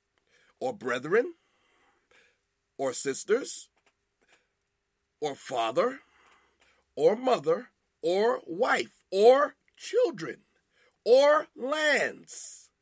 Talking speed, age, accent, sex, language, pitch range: 65 wpm, 50-69, American, male, English, 170-255 Hz